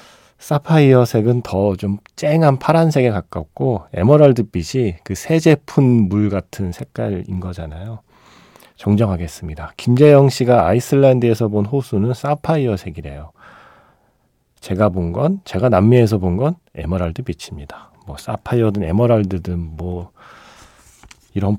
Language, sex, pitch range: Korean, male, 95-135 Hz